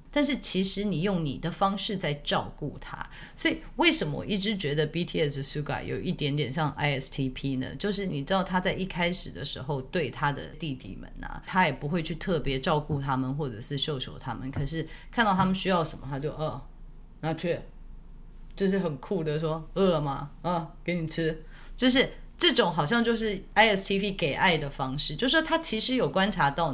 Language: Chinese